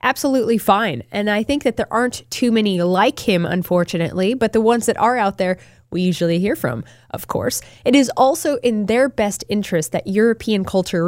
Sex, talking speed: female, 195 wpm